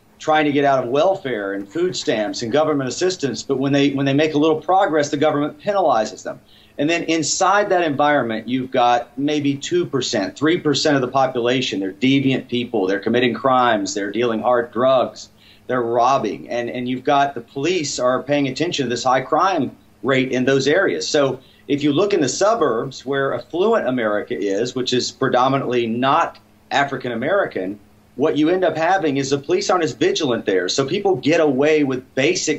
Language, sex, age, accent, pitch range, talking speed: English, male, 40-59, American, 120-155 Hz, 190 wpm